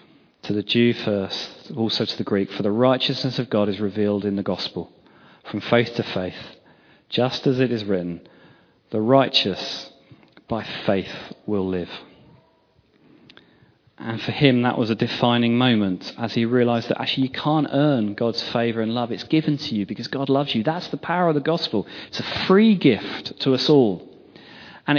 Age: 30-49